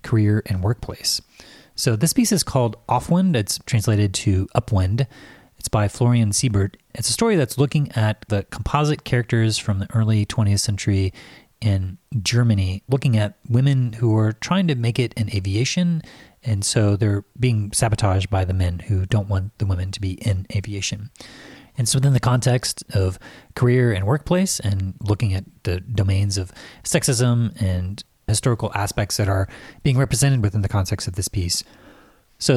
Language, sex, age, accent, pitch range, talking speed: English, male, 30-49, American, 100-125 Hz, 170 wpm